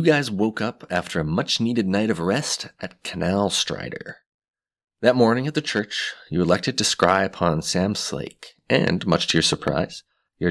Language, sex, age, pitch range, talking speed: English, male, 30-49, 85-105 Hz, 185 wpm